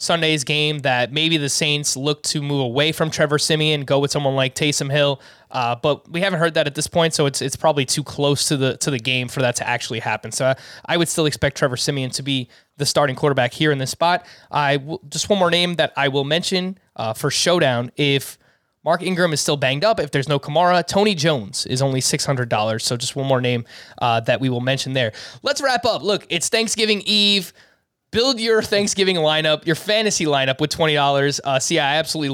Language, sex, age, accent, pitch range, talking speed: English, male, 20-39, American, 135-170 Hz, 230 wpm